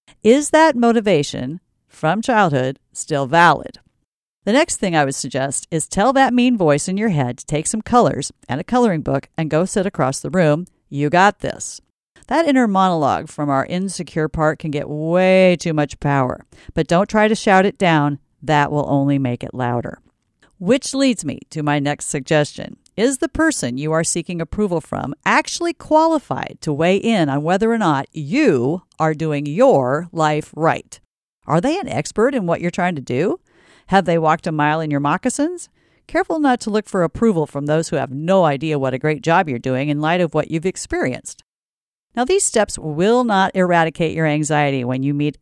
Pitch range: 145-210 Hz